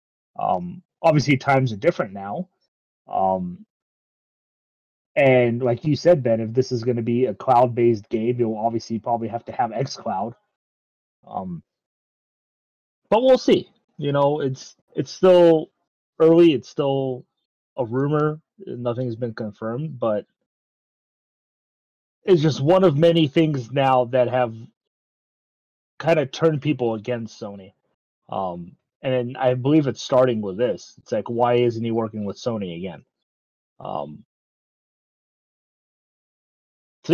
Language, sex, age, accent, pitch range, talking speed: English, male, 30-49, American, 115-155 Hz, 130 wpm